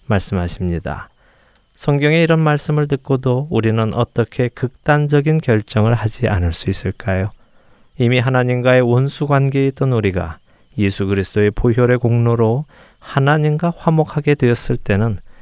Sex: male